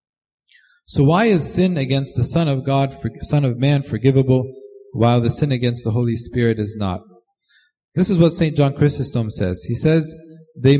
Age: 40-59